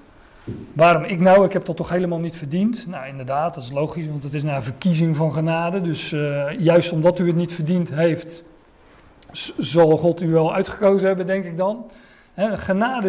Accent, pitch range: Dutch, 160-195 Hz